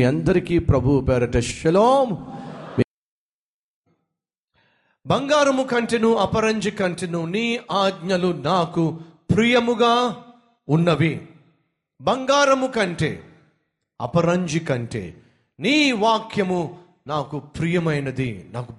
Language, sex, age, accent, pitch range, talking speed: Telugu, male, 40-59, native, 155-220 Hz, 65 wpm